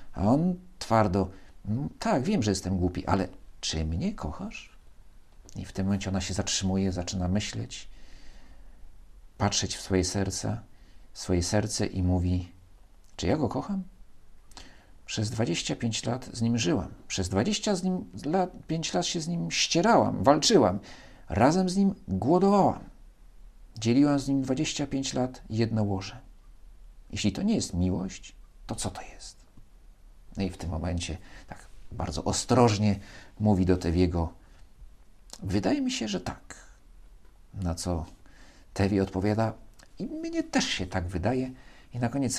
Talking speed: 135 wpm